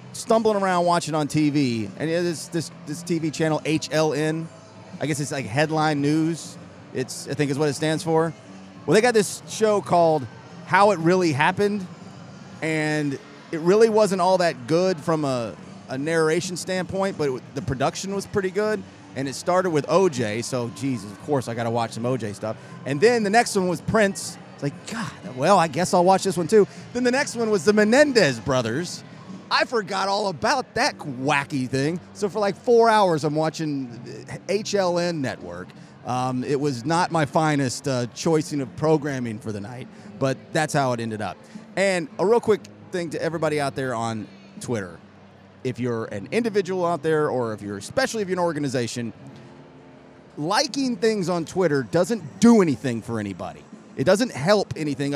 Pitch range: 130-185 Hz